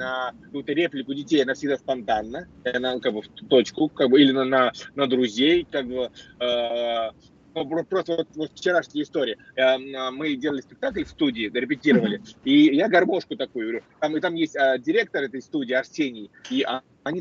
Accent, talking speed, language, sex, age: native, 155 wpm, Russian, male, 30-49